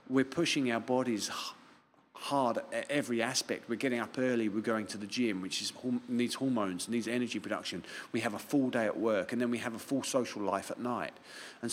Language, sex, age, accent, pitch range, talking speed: English, male, 40-59, British, 100-120 Hz, 215 wpm